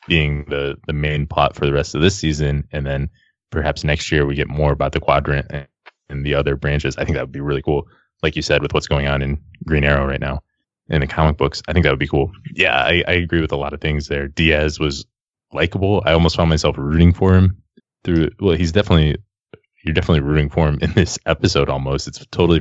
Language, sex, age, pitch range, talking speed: English, male, 20-39, 70-85 Hz, 240 wpm